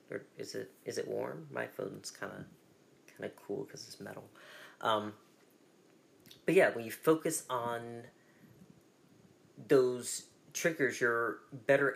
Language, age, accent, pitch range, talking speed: English, 30-49, American, 105-145 Hz, 135 wpm